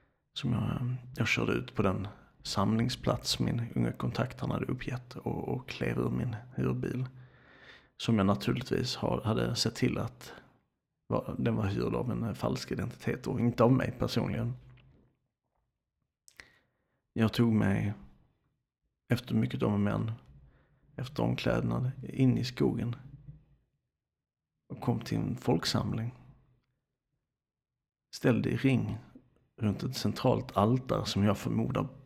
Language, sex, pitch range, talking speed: Swedish, male, 105-130 Hz, 125 wpm